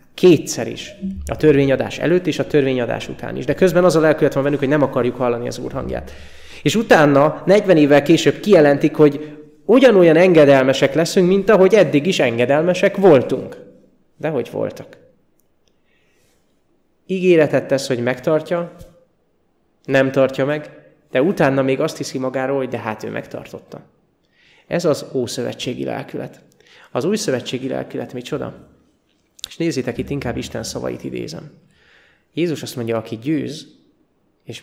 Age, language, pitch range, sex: 20-39, Hungarian, 125-155 Hz, male